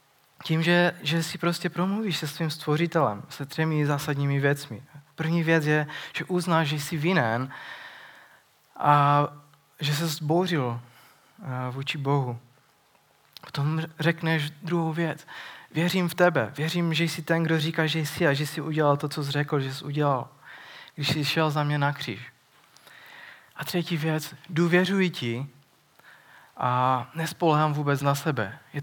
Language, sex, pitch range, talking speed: Czech, male, 140-165 Hz, 150 wpm